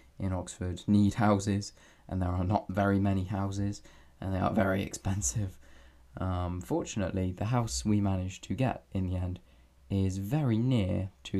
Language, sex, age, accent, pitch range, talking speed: English, male, 20-39, British, 85-105 Hz, 165 wpm